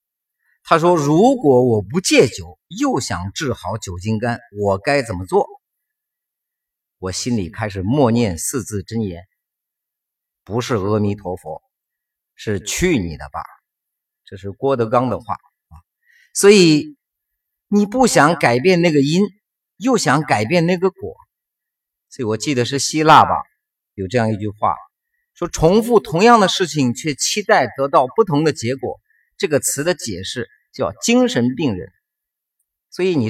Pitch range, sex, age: 110-180 Hz, male, 50-69